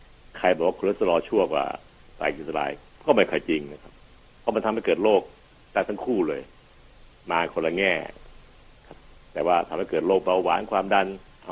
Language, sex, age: Thai, male, 60-79